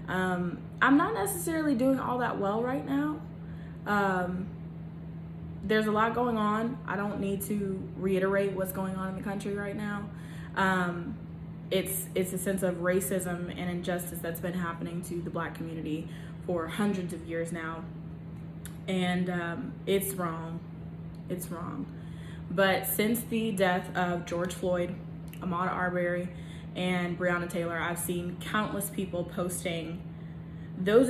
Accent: American